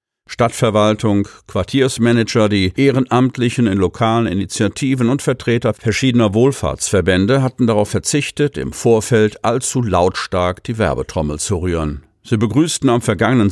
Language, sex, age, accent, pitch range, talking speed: German, male, 50-69, German, 95-120 Hz, 115 wpm